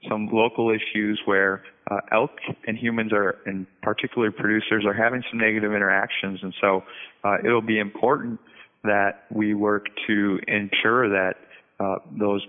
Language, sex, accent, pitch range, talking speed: English, male, American, 95-110 Hz, 150 wpm